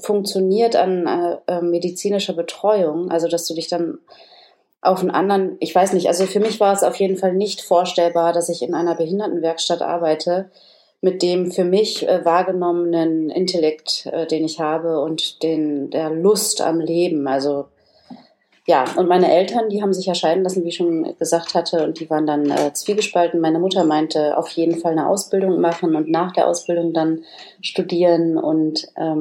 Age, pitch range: 30-49, 165-190 Hz